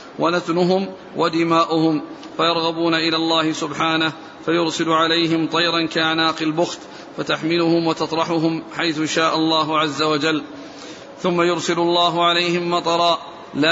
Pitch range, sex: 160-170 Hz, male